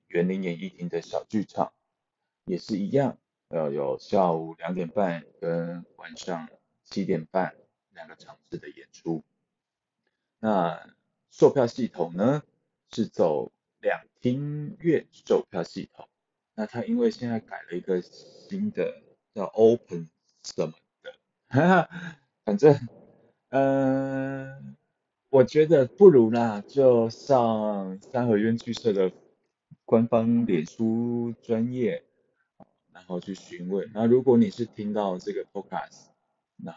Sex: male